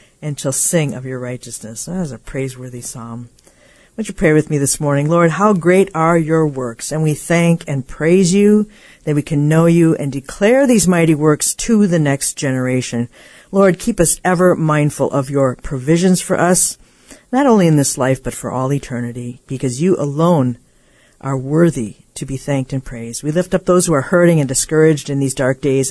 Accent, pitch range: American, 135-175 Hz